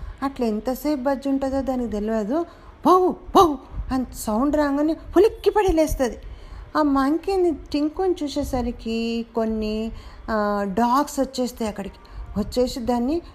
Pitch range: 255-315 Hz